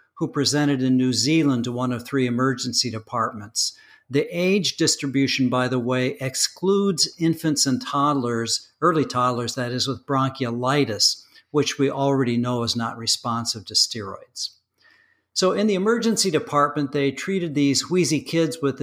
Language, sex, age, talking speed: English, male, 60-79, 150 wpm